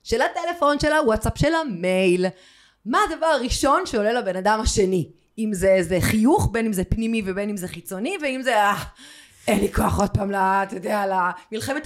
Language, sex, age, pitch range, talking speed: Hebrew, female, 30-49, 175-260 Hz, 170 wpm